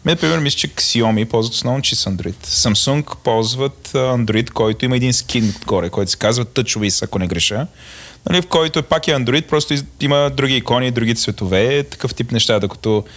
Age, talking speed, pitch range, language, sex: 30-49, 180 wpm, 110-140 Hz, Bulgarian, male